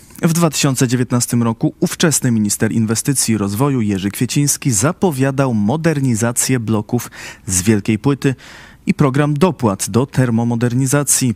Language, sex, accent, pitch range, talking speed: Polish, male, native, 110-145 Hz, 110 wpm